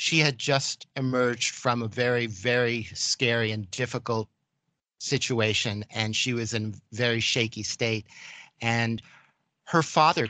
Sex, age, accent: male, 50-69, American